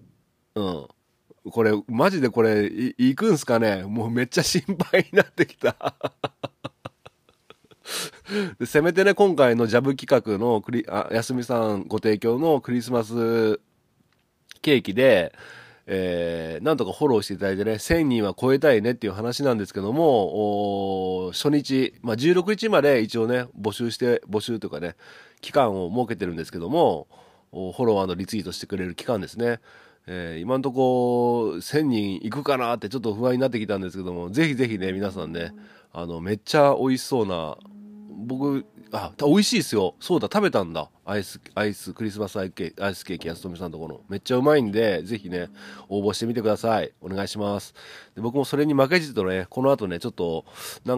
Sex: male